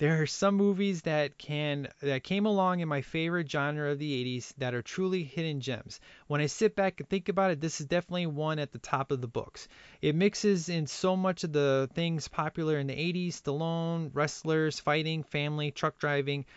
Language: English